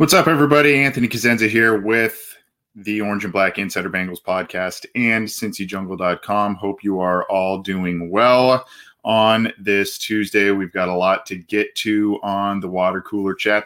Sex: male